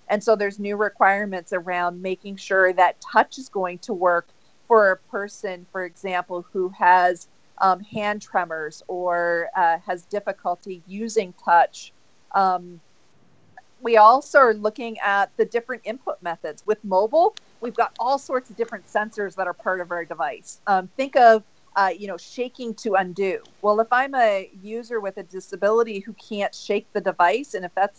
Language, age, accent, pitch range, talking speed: English, 40-59, American, 180-220 Hz, 170 wpm